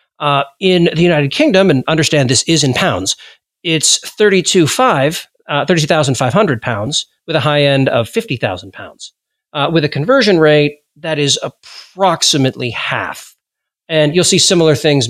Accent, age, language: American, 40-59, English